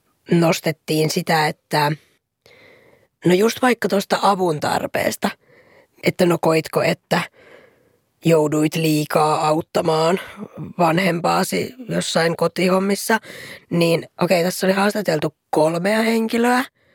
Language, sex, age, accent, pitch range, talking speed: Finnish, female, 20-39, native, 155-200 Hz, 95 wpm